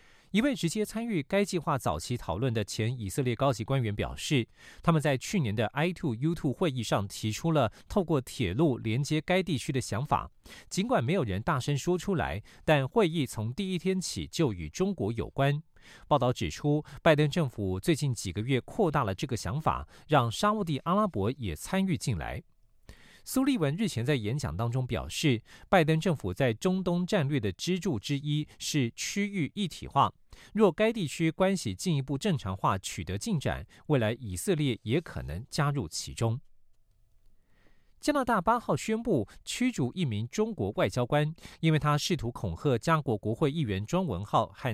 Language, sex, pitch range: Japanese, male, 115-175 Hz